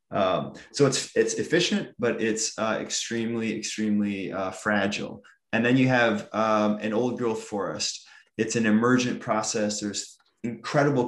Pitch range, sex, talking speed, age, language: 105-125 Hz, male, 145 wpm, 20-39, English